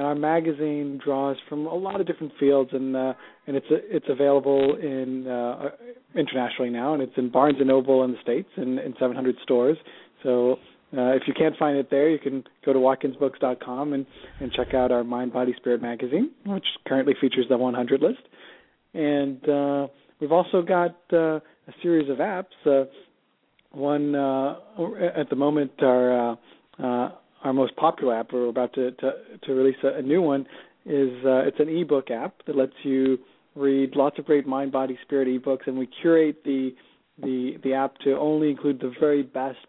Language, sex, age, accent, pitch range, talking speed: English, male, 40-59, American, 130-150 Hz, 185 wpm